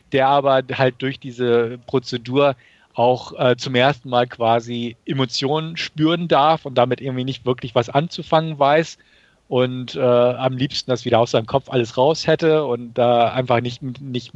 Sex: male